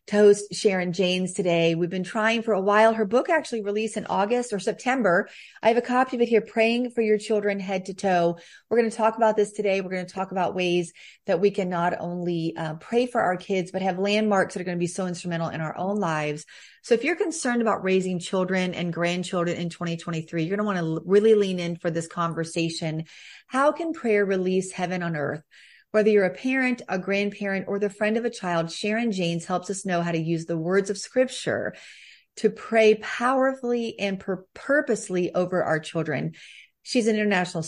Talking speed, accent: 215 wpm, American